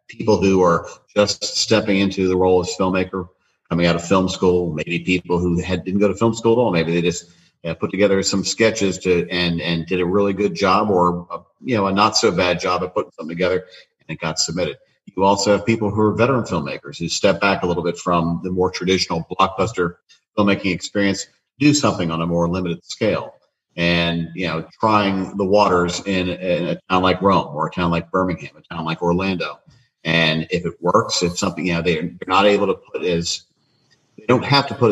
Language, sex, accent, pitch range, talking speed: English, male, American, 85-100 Hz, 220 wpm